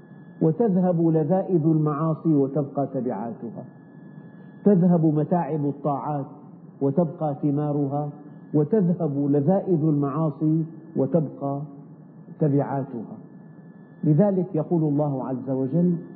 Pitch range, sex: 145-175 Hz, male